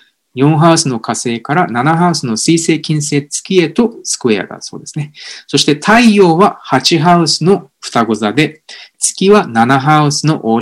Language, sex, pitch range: Japanese, male, 120-180 Hz